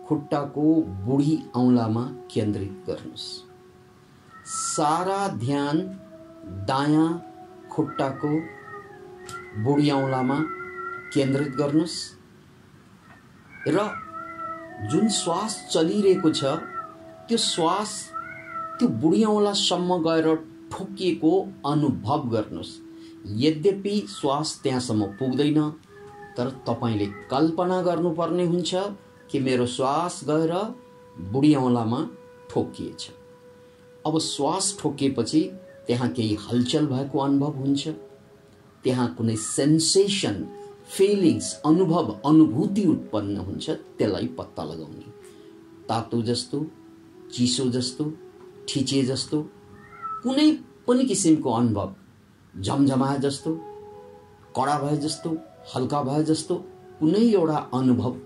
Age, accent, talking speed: 50-69, Indian, 80 wpm